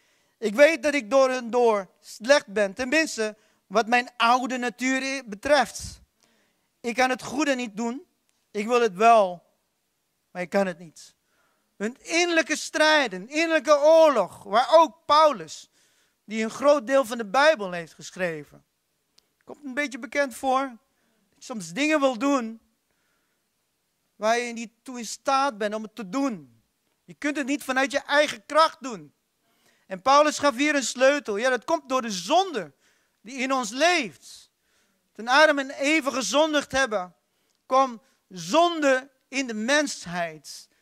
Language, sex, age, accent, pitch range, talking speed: English, male, 40-59, Dutch, 215-290 Hz, 155 wpm